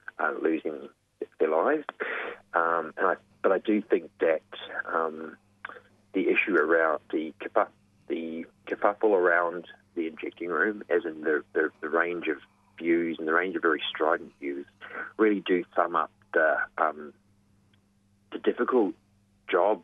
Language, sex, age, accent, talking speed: English, male, 40-59, Australian, 145 wpm